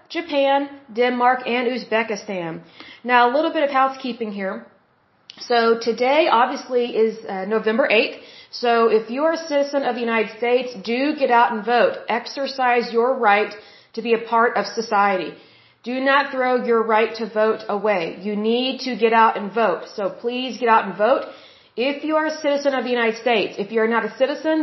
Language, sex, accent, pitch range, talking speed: German, female, American, 215-255 Hz, 190 wpm